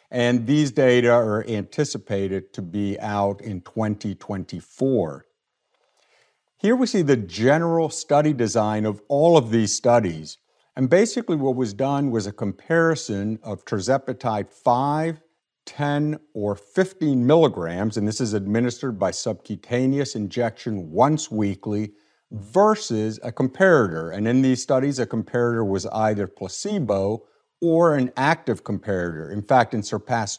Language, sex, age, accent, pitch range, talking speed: English, male, 50-69, American, 100-135 Hz, 130 wpm